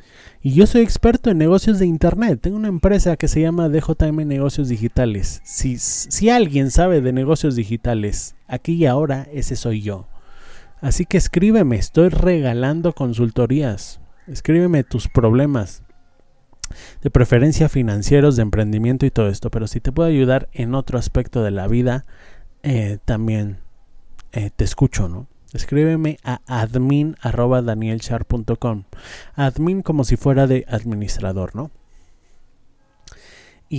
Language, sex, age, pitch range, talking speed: Spanish, male, 30-49, 110-145 Hz, 135 wpm